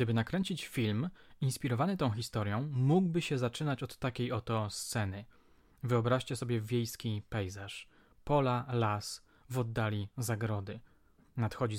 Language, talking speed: Polish, 115 wpm